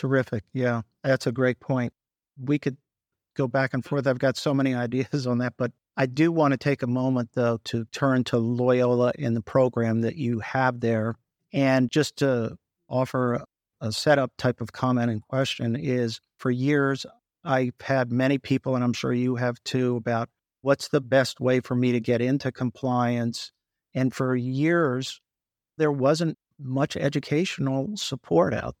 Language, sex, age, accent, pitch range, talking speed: English, male, 50-69, American, 125-140 Hz, 175 wpm